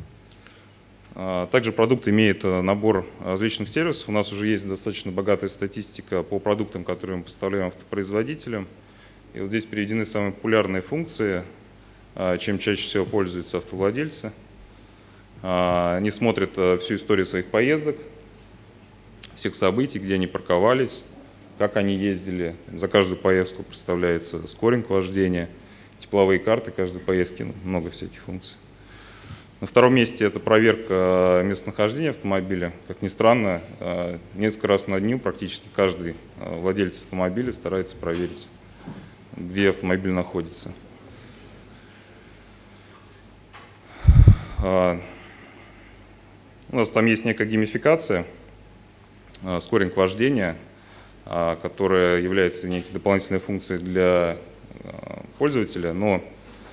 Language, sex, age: Russian, male, 30-49